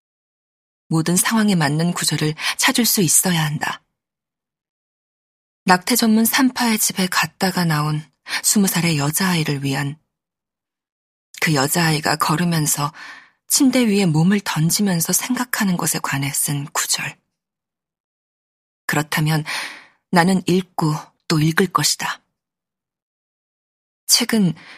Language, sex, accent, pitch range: Korean, female, native, 155-210 Hz